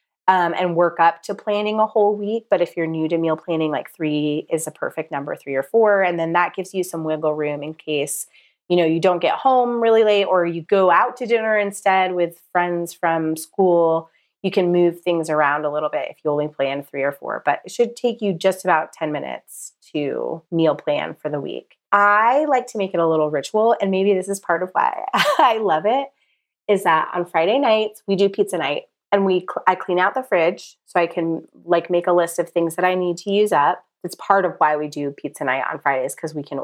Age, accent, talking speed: 30-49, American, 235 wpm